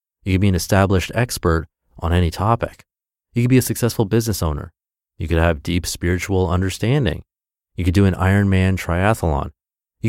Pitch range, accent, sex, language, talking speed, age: 85-110 Hz, American, male, English, 170 wpm, 30-49